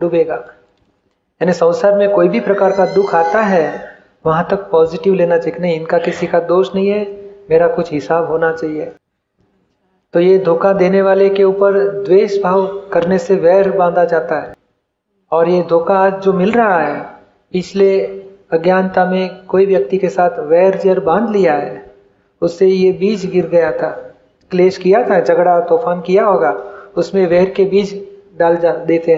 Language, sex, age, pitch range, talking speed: Gujarati, male, 40-59, 165-195 Hz, 150 wpm